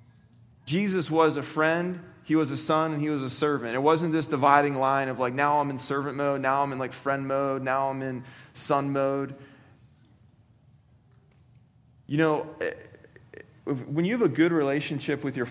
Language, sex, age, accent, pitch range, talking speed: English, male, 30-49, American, 130-160 Hz, 180 wpm